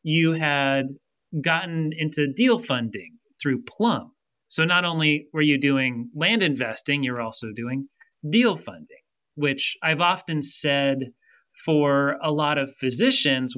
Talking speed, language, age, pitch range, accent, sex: 135 wpm, English, 30-49, 135-175 Hz, American, male